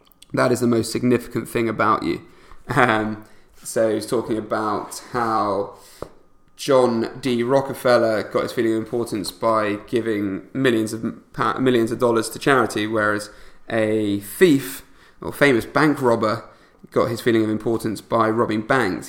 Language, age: English, 20-39